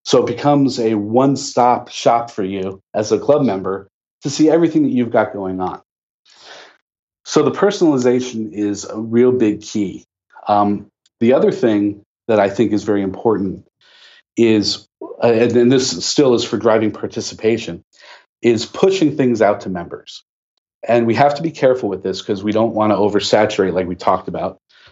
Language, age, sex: English, 40-59, male